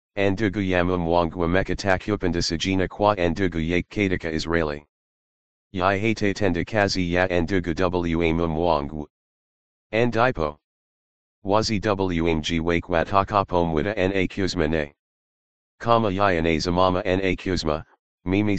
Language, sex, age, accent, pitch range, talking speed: English, male, 40-59, American, 85-95 Hz, 115 wpm